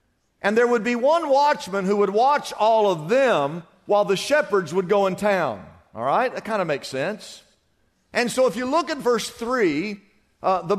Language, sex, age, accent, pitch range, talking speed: English, male, 50-69, American, 135-225 Hz, 195 wpm